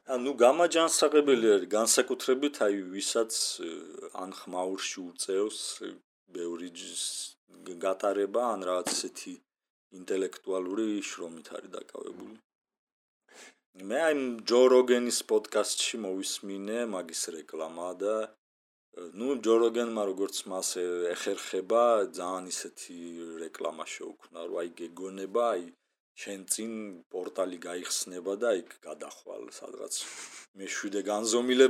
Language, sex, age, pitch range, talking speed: English, male, 40-59, 95-130 Hz, 80 wpm